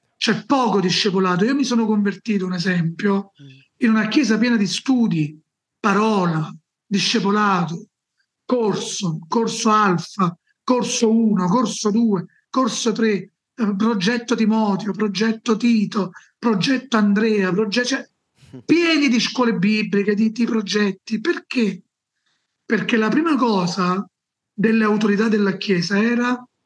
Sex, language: male, Italian